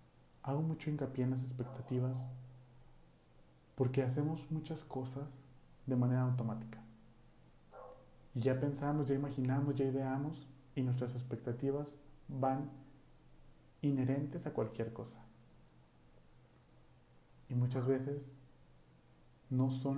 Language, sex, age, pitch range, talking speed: Spanish, male, 30-49, 115-135 Hz, 100 wpm